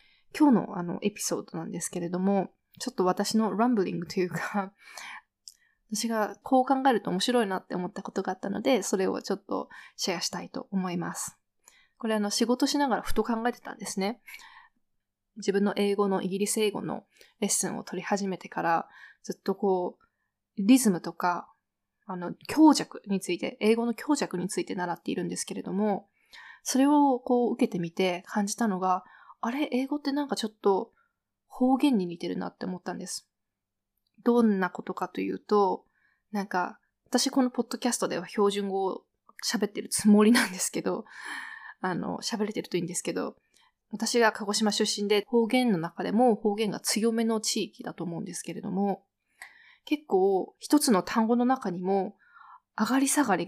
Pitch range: 190-245 Hz